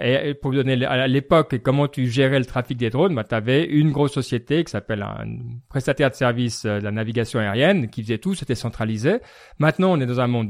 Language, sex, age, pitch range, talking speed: French, male, 40-59, 120-150 Hz, 230 wpm